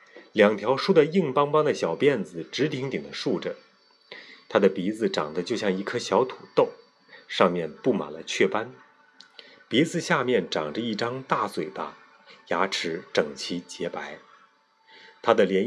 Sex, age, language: male, 30-49, Chinese